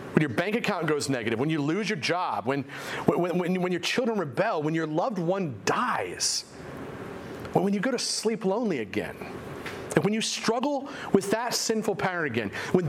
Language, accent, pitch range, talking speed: English, American, 155-220 Hz, 185 wpm